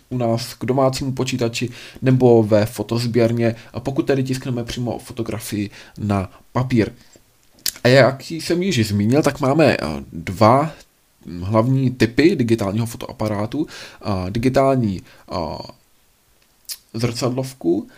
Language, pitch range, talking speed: Czech, 115-135 Hz, 95 wpm